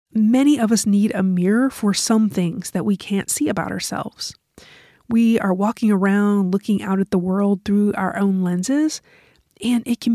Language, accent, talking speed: English, American, 185 wpm